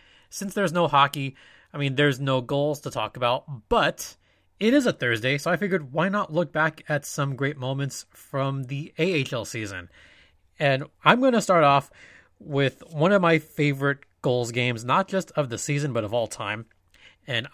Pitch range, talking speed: 120-155 Hz, 190 wpm